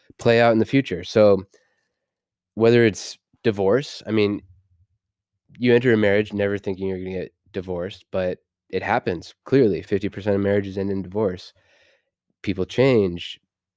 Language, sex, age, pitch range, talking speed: English, male, 20-39, 95-105 Hz, 150 wpm